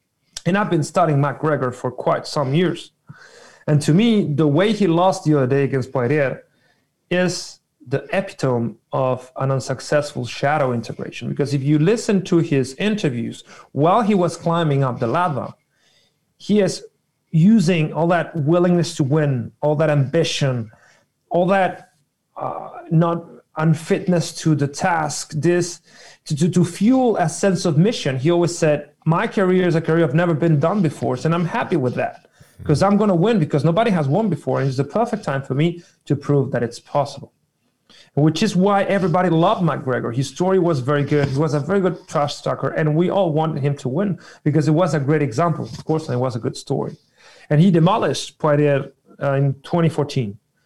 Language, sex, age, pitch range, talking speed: English, male, 40-59, 140-180 Hz, 185 wpm